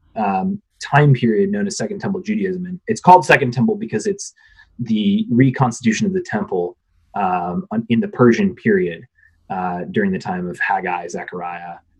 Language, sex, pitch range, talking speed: English, male, 130-200 Hz, 160 wpm